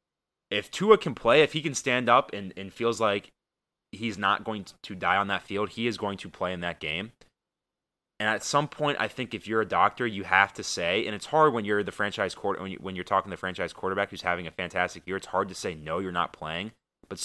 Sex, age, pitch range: male, 20-39, 90-115 Hz